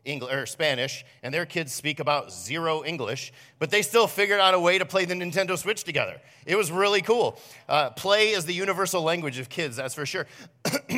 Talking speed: 210 wpm